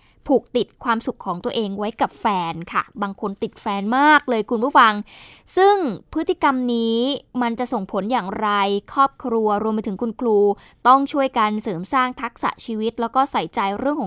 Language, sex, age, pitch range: Thai, female, 20-39, 220-275 Hz